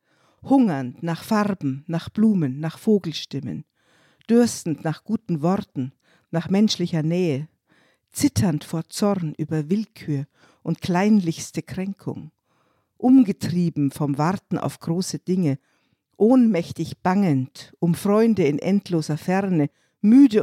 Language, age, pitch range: German, 50-69, 150-195 Hz